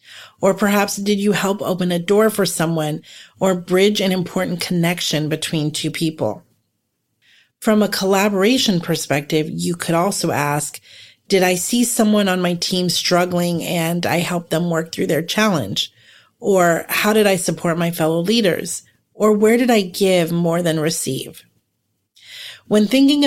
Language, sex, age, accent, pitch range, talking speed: English, female, 30-49, American, 160-200 Hz, 155 wpm